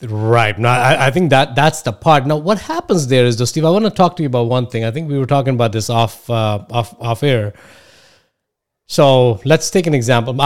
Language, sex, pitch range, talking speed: English, male, 110-130 Hz, 240 wpm